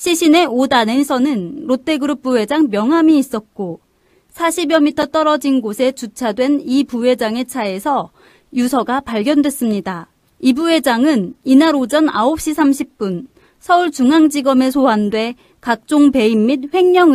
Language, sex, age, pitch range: Korean, female, 30-49, 235-305 Hz